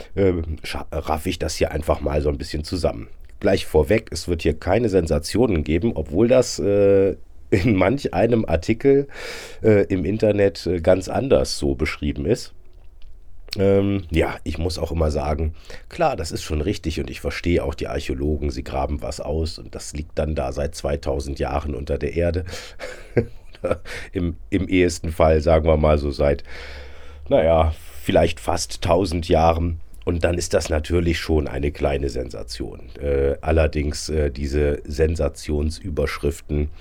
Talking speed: 155 wpm